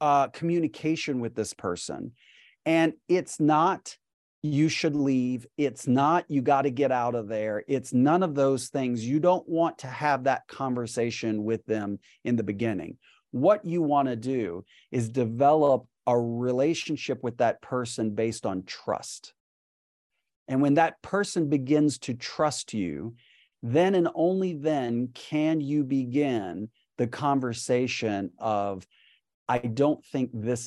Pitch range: 120-155 Hz